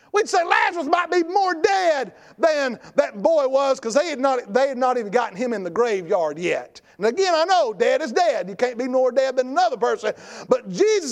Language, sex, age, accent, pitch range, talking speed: English, male, 50-69, American, 220-320 Hz, 215 wpm